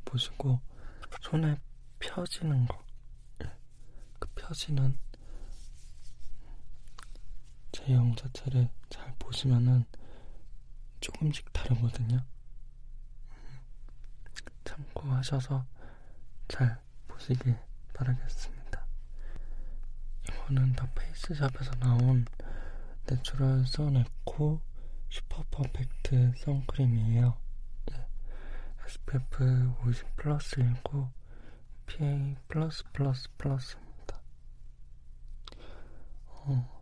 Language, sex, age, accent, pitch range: Korean, male, 20-39, native, 110-135 Hz